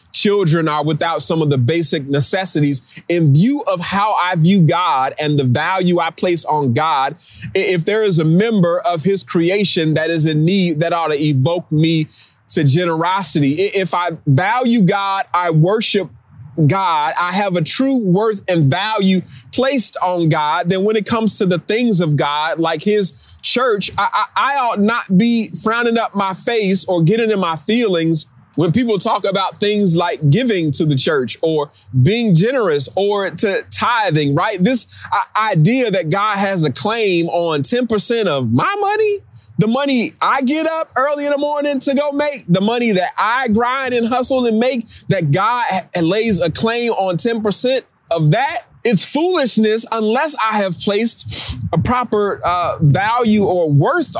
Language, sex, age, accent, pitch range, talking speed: English, male, 30-49, American, 160-220 Hz, 175 wpm